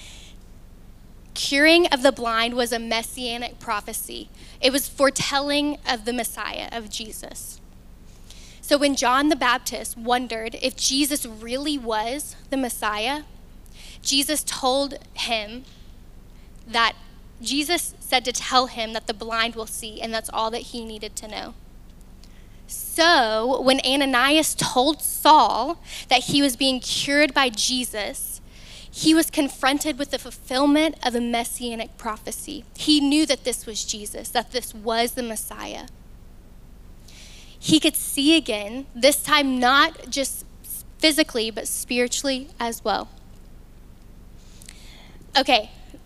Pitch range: 230-280 Hz